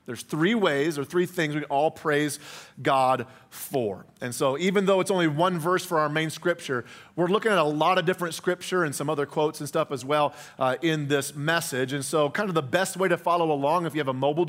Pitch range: 140-170 Hz